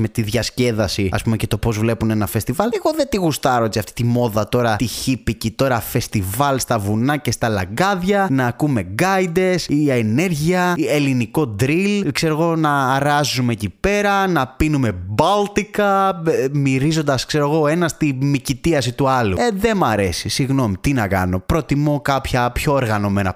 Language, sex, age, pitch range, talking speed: Greek, male, 20-39, 115-165 Hz, 170 wpm